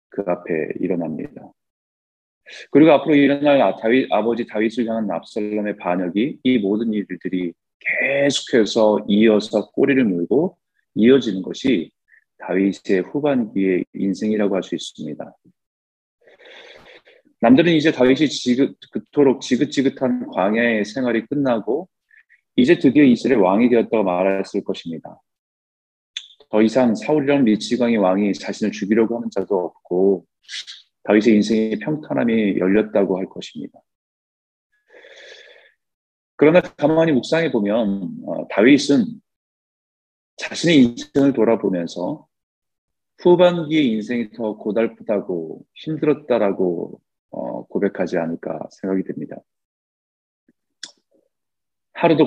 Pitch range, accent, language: 100-150 Hz, native, Korean